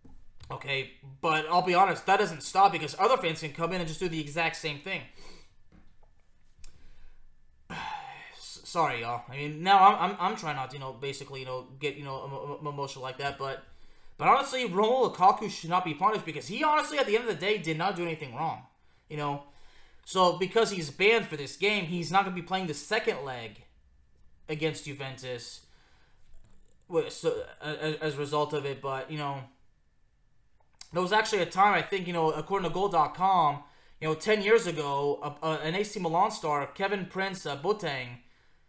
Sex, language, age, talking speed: male, English, 20-39, 190 wpm